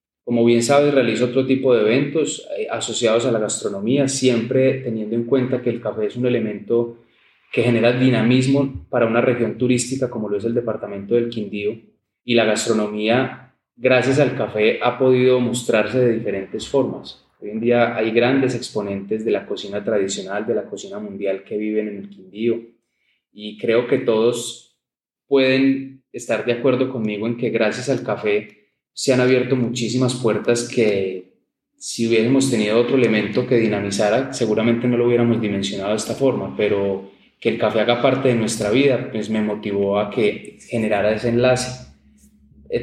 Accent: Colombian